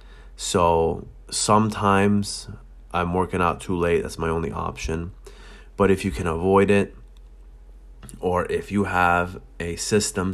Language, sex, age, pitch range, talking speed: English, male, 20-39, 85-100 Hz, 135 wpm